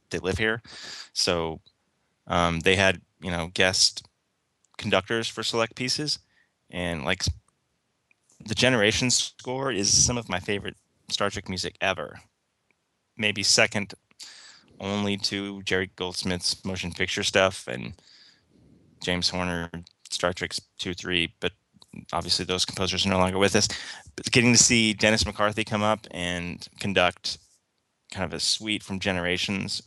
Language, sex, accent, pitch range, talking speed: English, male, American, 90-110 Hz, 140 wpm